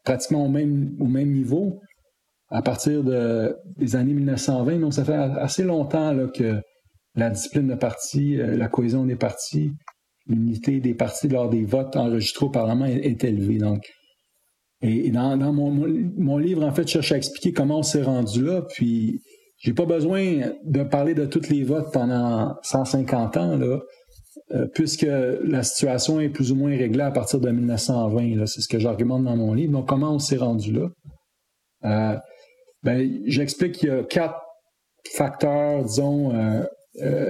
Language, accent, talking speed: English, Canadian, 175 wpm